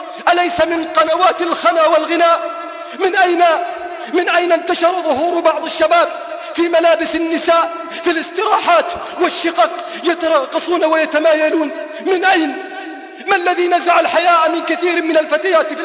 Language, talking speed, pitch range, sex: English, 120 wpm, 305-335 Hz, male